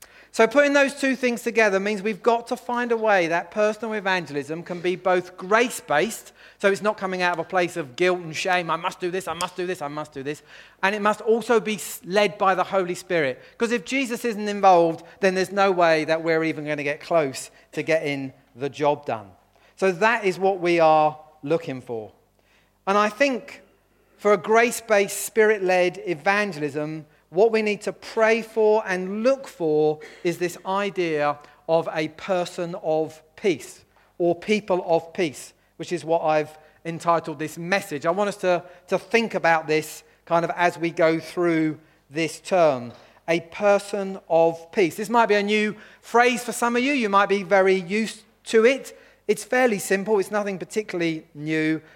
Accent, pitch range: British, 160-215 Hz